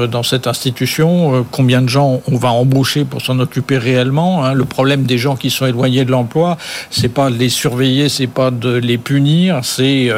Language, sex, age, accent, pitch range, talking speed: French, male, 60-79, French, 125-145 Hz, 195 wpm